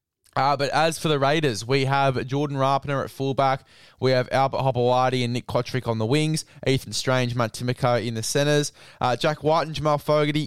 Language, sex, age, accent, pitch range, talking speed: English, male, 20-39, Australian, 115-135 Hz, 200 wpm